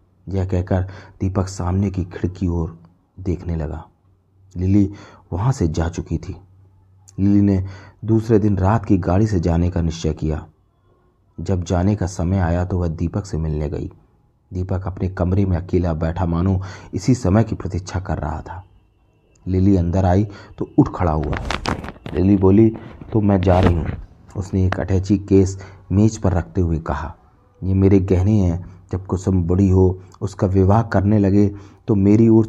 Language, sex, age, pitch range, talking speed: Hindi, male, 30-49, 85-100 Hz, 170 wpm